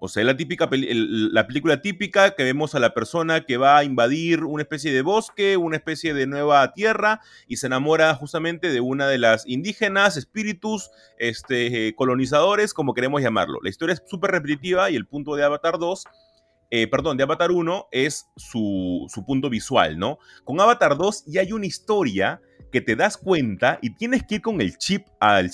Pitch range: 115-180 Hz